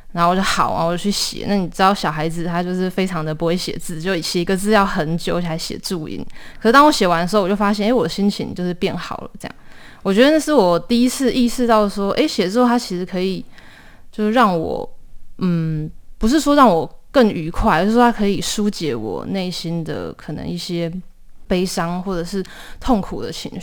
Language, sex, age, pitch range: Chinese, female, 20-39, 175-215 Hz